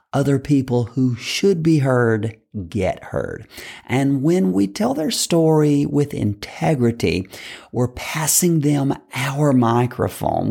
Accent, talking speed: American, 120 wpm